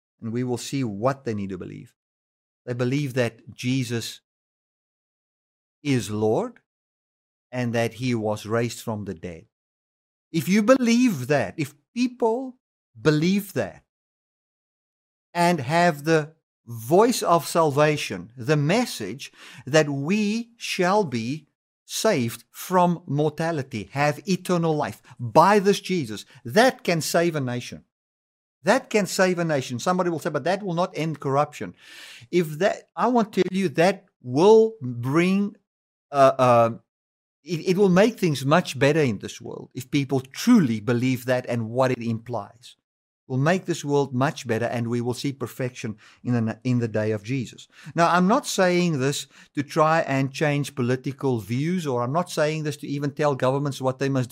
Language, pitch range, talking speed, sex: English, 120-175 Hz, 160 wpm, male